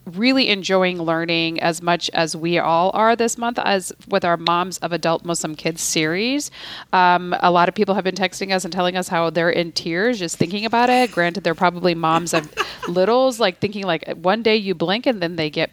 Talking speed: 220 wpm